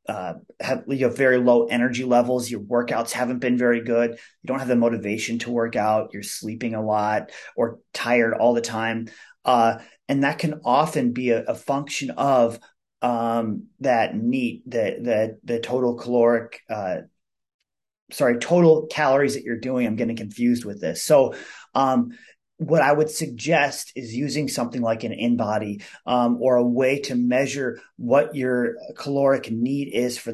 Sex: male